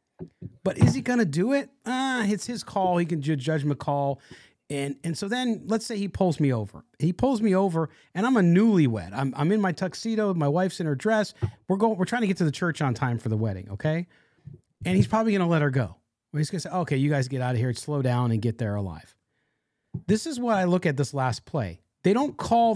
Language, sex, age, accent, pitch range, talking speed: English, male, 40-59, American, 145-215 Hz, 255 wpm